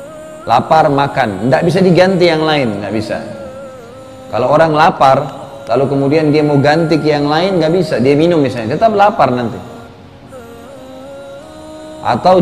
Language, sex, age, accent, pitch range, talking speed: Indonesian, male, 30-49, native, 125-185 Hz, 140 wpm